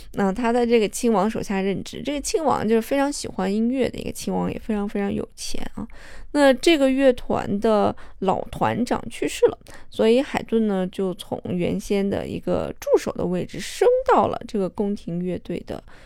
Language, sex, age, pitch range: Chinese, female, 20-39, 200-245 Hz